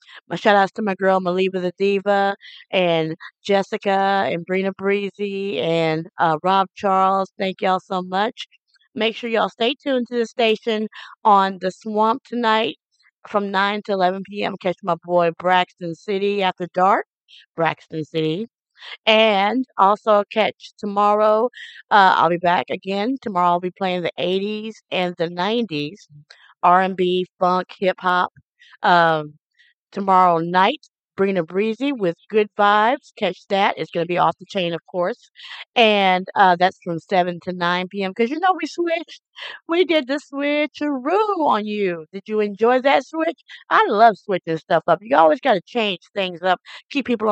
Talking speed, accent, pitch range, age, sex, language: 160 wpm, American, 180-220 Hz, 50-69, female, English